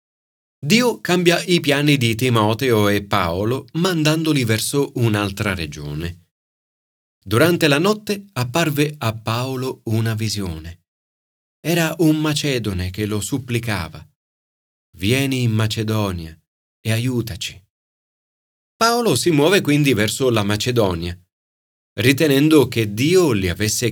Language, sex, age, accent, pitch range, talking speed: Italian, male, 30-49, native, 100-145 Hz, 110 wpm